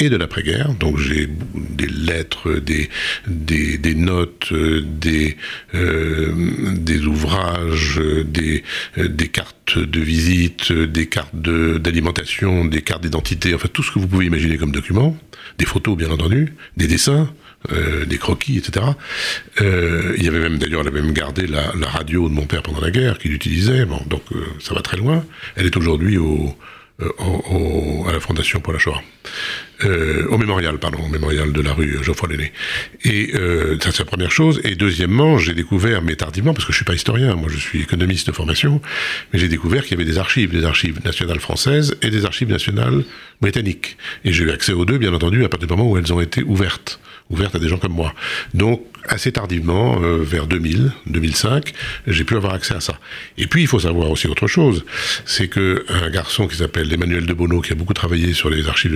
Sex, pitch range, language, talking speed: male, 80-100 Hz, French, 205 wpm